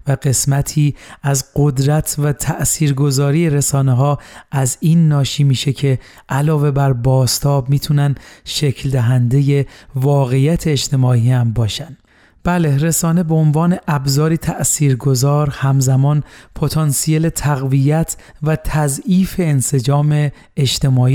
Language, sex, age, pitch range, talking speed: Persian, male, 30-49, 130-150 Hz, 100 wpm